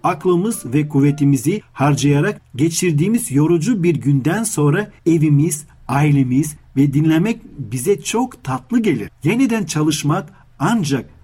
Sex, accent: male, native